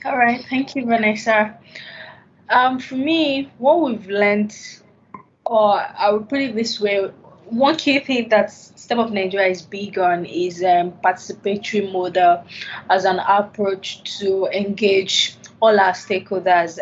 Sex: female